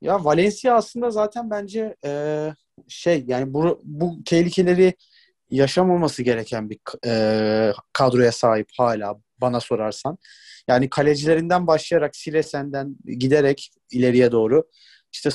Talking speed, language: 110 wpm, Turkish